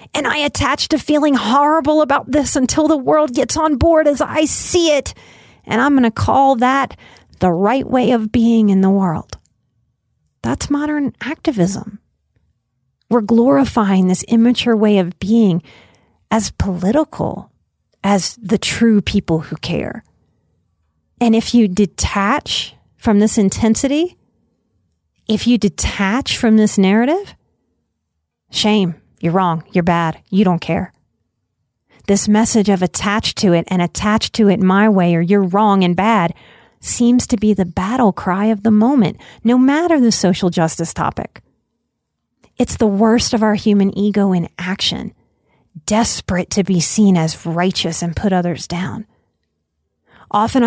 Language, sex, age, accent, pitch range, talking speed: English, female, 30-49, American, 180-235 Hz, 145 wpm